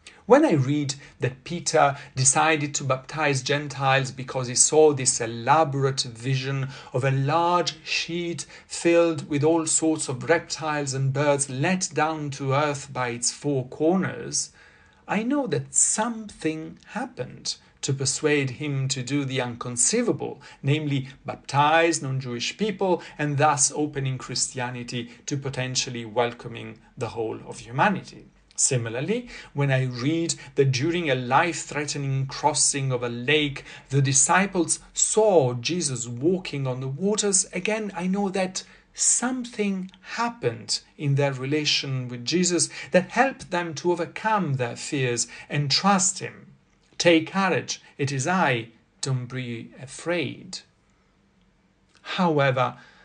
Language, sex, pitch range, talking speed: English, male, 135-170 Hz, 125 wpm